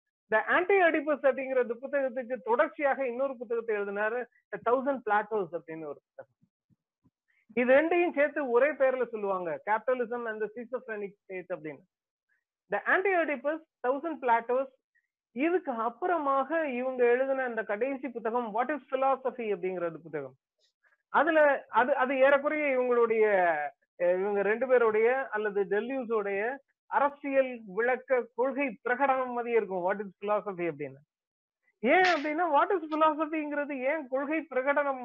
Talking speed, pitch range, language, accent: 75 wpm, 225-295 Hz, Tamil, native